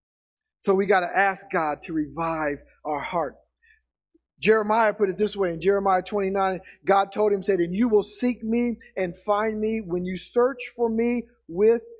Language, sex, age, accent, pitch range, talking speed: English, male, 50-69, American, 195-245 Hz, 180 wpm